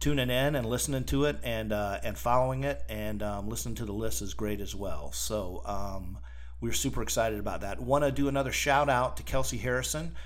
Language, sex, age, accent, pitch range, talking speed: English, male, 50-69, American, 100-130 Hz, 215 wpm